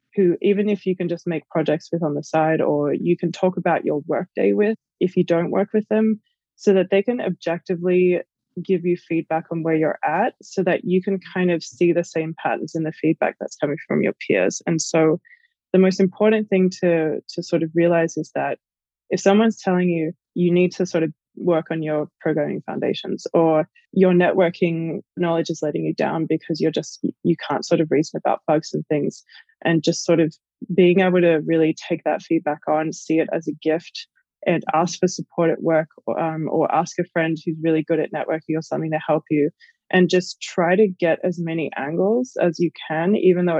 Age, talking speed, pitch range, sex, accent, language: 20-39, 215 wpm, 160-185 Hz, female, Australian, English